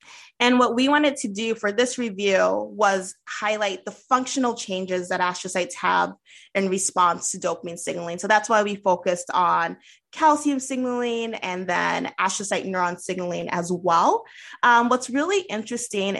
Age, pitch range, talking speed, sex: 20-39, 190-245 Hz, 150 wpm, female